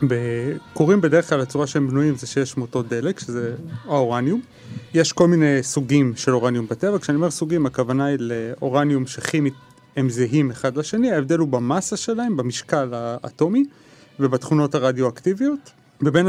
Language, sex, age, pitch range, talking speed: Hebrew, male, 30-49, 130-165 Hz, 145 wpm